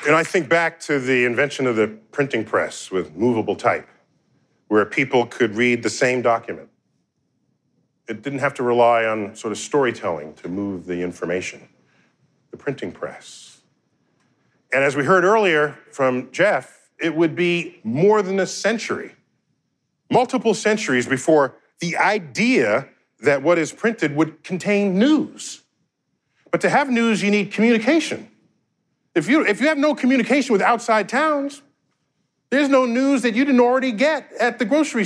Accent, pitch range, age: American, 150-245 Hz, 40-59